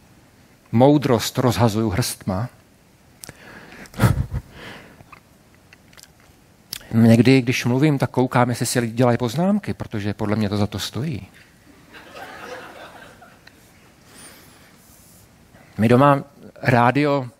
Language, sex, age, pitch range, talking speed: Czech, male, 50-69, 110-125 Hz, 80 wpm